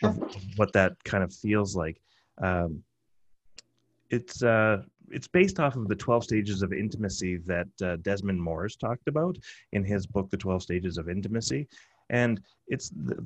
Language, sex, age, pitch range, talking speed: English, male, 30-49, 90-110 Hz, 165 wpm